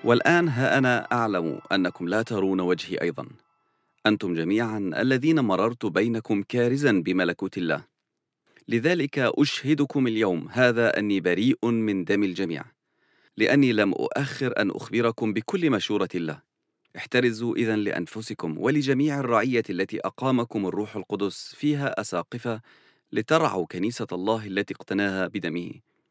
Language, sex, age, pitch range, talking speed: English, male, 40-59, 105-130 Hz, 115 wpm